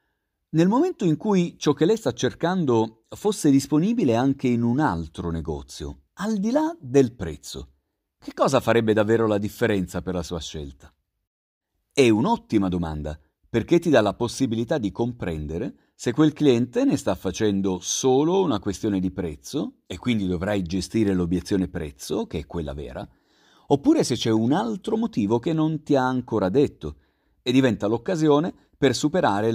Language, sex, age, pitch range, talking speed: Italian, male, 40-59, 90-150 Hz, 160 wpm